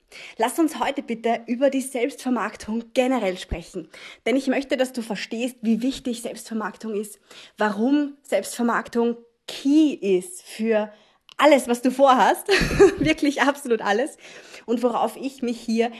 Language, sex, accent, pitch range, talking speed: German, female, German, 205-255 Hz, 135 wpm